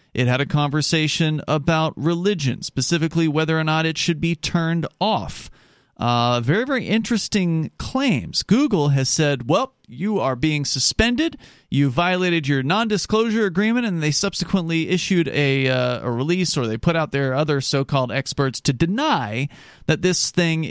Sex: male